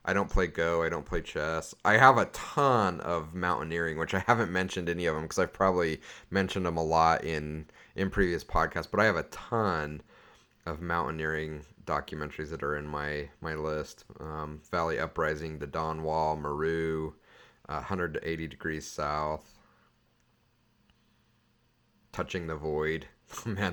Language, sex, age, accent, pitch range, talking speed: English, male, 30-49, American, 80-105 Hz, 155 wpm